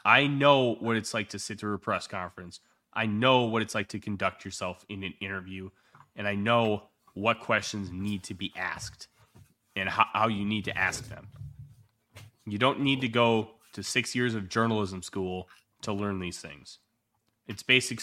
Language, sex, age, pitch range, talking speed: English, male, 20-39, 100-130 Hz, 185 wpm